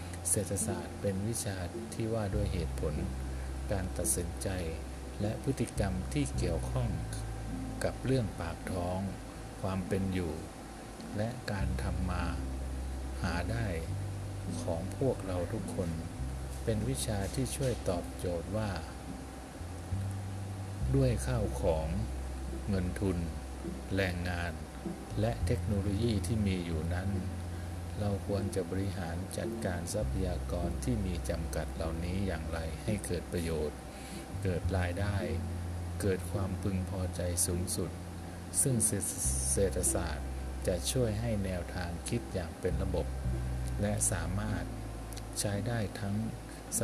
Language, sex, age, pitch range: Thai, male, 60-79, 80-100 Hz